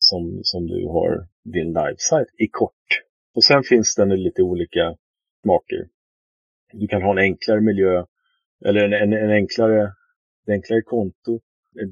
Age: 30-49